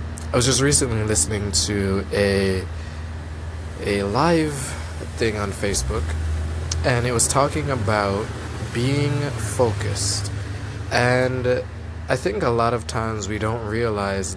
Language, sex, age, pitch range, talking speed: English, male, 20-39, 80-115 Hz, 120 wpm